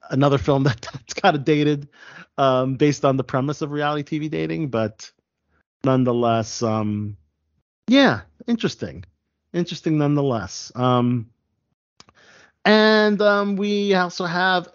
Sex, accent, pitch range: male, American, 115-150 Hz